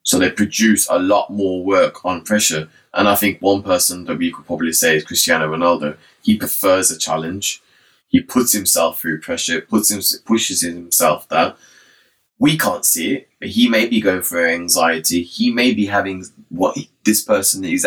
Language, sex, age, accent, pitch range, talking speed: English, male, 20-39, British, 95-125 Hz, 190 wpm